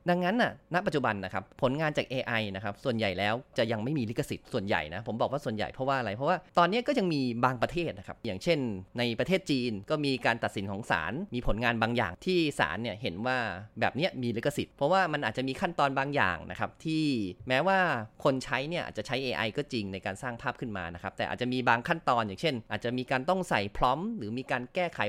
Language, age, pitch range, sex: Thai, 30-49, 110-160 Hz, male